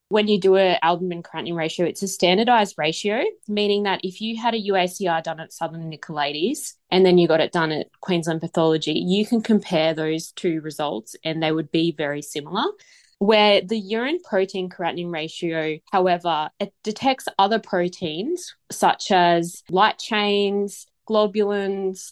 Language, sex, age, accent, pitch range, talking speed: English, female, 20-39, Australian, 165-215 Hz, 160 wpm